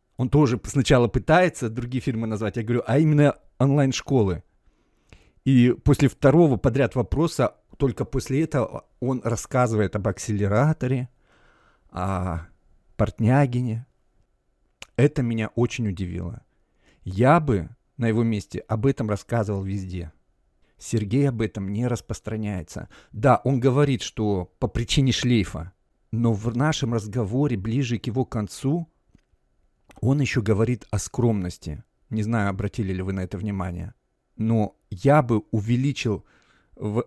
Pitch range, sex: 100-125 Hz, male